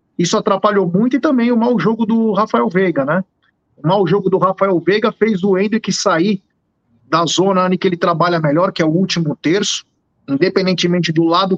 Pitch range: 165-215 Hz